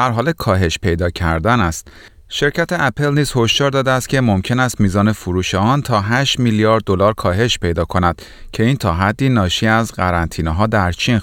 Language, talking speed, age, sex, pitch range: Persian, 175 wpm, 30-49, male, 90-130 Hz